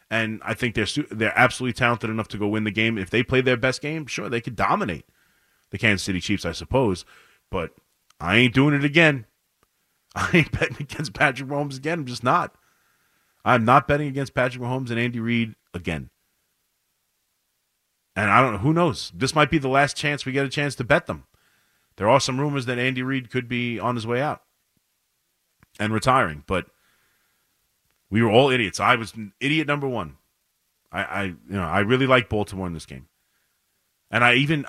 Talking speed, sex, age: 195 wpm, male, 30-49